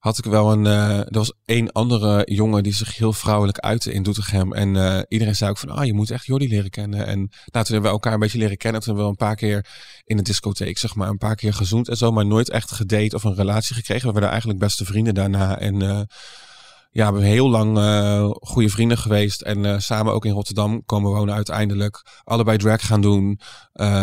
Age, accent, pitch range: 20-39, Dutch, 105-115 Hz